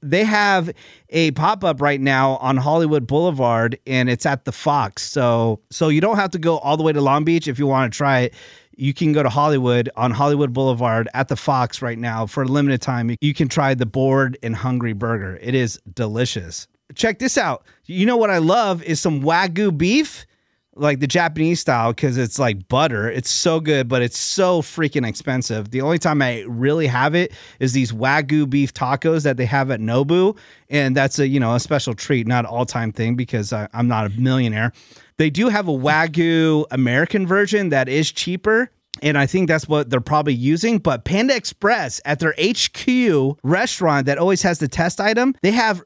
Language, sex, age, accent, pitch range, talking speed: English, male, 30-49, American, 125-170 Hz, 205 wpm